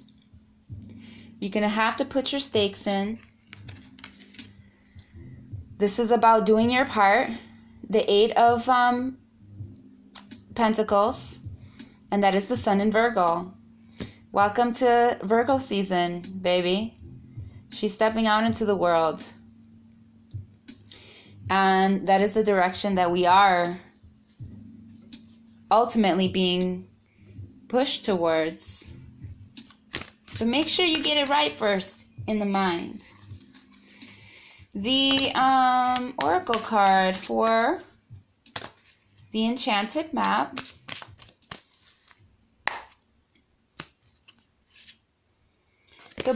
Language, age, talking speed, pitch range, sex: English, 20-39, 90 wpm, 160-230 Hz, female